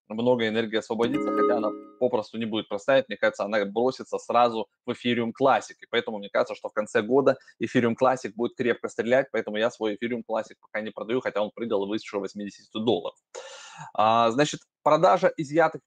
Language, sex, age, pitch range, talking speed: Russian, male, 20-39, 115-150 Hz, 180 wpm